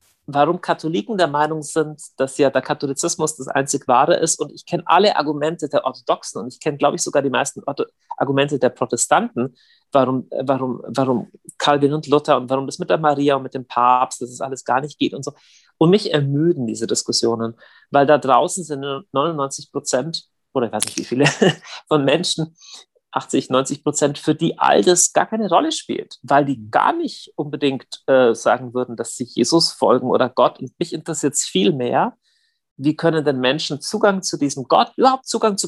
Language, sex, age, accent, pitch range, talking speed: German, male, 40-59, German, 130-175 Hz, 195 wpm